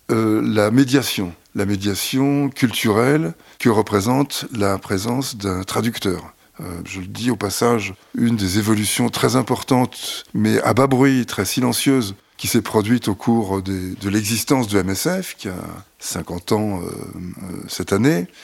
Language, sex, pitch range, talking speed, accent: French, male, 95-125 Hz, 150 wpm, French